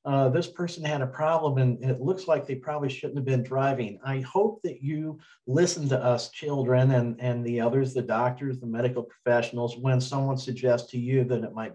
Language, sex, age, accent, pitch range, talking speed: English, male, 50-69, American, 115-140 Hz, 210 wpm